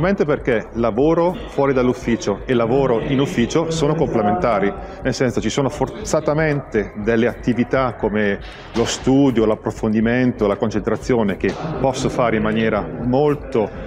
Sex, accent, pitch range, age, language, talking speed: male, native, 115-150 Hz, 40-59, Italian, 130 wpm